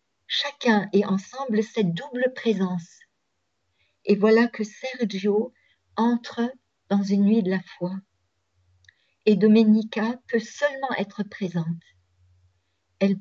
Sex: female